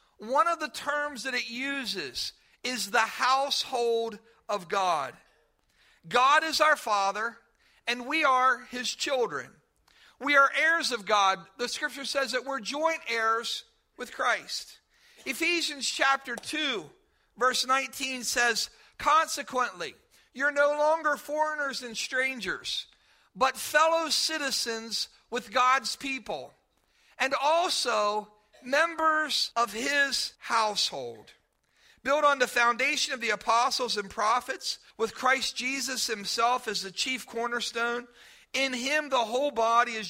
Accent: American